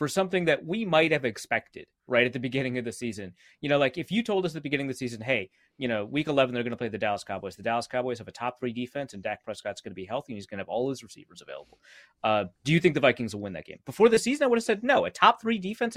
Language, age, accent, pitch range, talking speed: English, 30-49, American, 120-170 Hz, 320 wpm